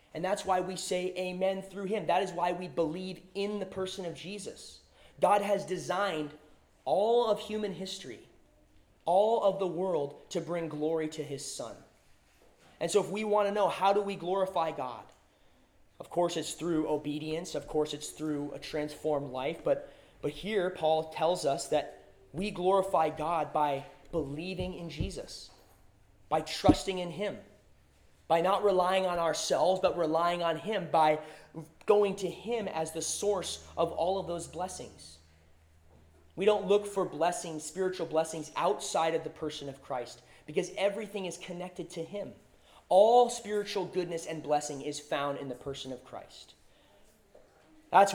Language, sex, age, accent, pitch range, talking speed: English, male, 30-49, American, 150-190 Hz, 160 wpm